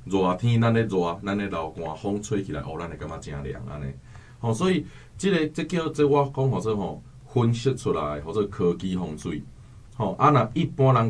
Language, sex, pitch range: Chinese, male, 85-125 Hz